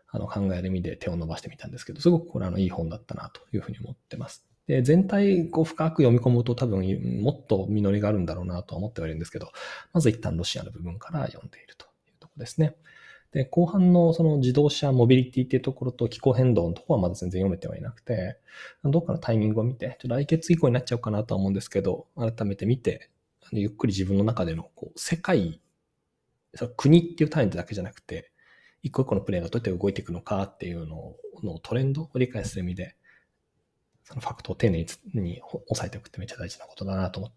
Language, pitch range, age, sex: Japanese, 95-160 Hz, 20-39, male